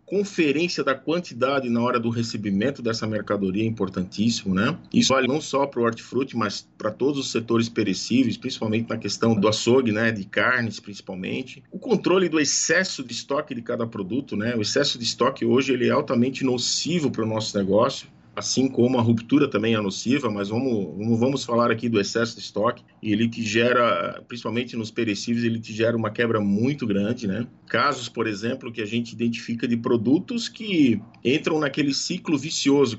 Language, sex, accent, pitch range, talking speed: Portuguese, male, Brazilian, 115-150 Hz, 185 wpm